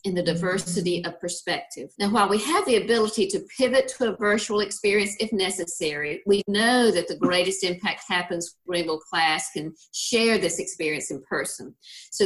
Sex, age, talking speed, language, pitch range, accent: female, 50-69, 175 wpm, English, 170-205 Hz, American